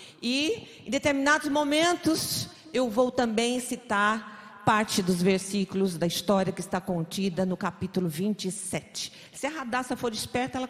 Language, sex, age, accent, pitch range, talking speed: Portuguese, female, 40-59, Brazilian, 195-275 Hz, 140 wpm